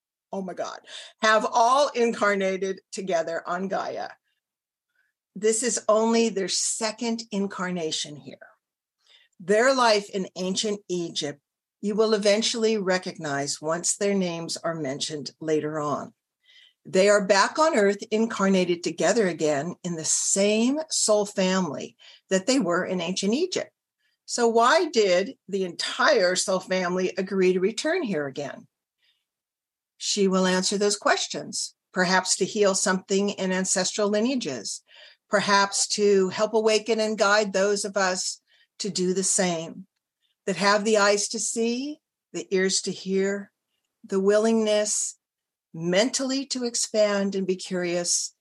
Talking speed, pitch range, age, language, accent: 130 wpm, 180-215 Hz, 50-69, English, American